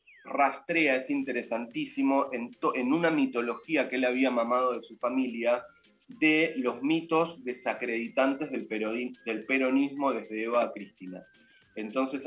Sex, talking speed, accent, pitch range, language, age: male, 135 wpm, Argentinian, 120-145 Hz, Spanish, 20-39